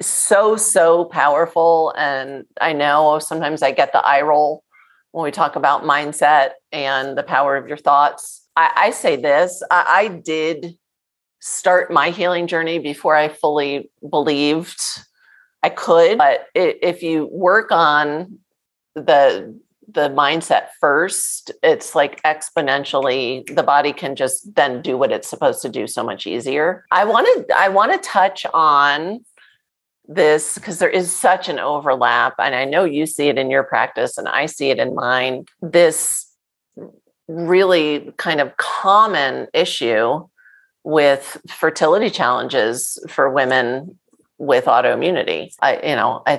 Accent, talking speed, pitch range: American, 145 wpm, 135-175 Hz